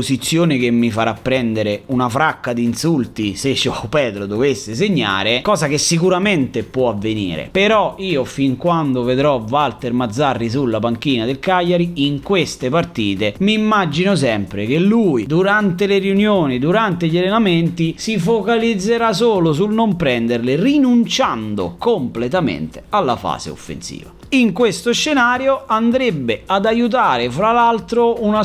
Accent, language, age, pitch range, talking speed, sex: native, Italian, 30-49, 130-215 Hz, 135 wpm, male